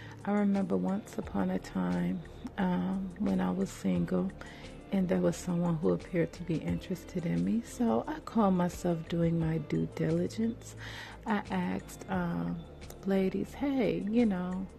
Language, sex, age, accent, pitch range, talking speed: English, female, 40-59, American, 175-205 Hz, 150 wpm